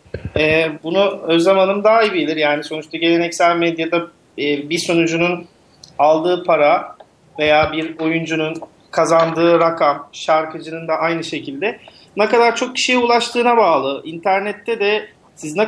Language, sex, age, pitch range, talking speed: Turkish, male, 40-59, 160-200 Hz, 125 wpm